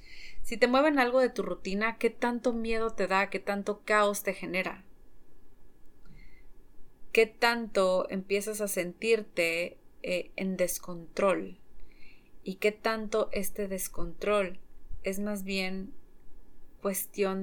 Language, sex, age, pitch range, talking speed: Spanish, female, 30-49, 180-205 Hz, 115 wpm